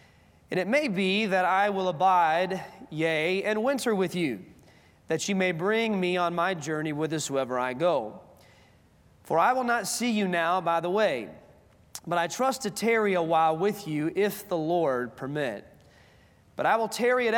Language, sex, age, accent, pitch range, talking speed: English, male, 30-49, American, 155-200 Hz, 180 wpm